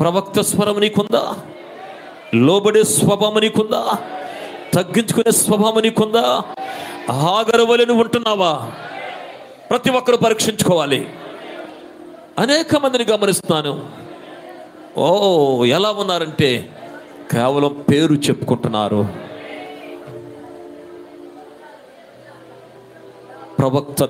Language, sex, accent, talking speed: Telugu, male, native, 55 wpm